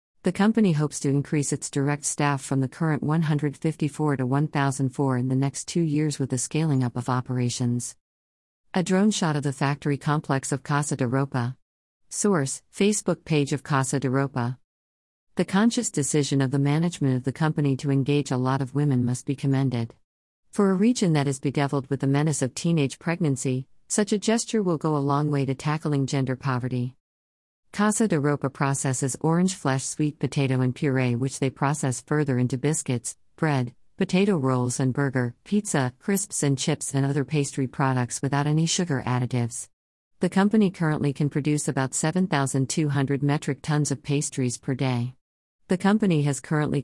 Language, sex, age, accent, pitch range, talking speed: English, female, 50-69, American, 130-155 Hz, 175 wpm